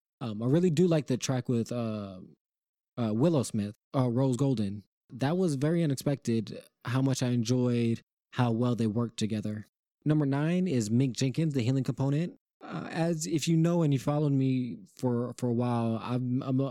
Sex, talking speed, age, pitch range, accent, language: male, 185 wpm, 20-39, 110-130 Hz, American, English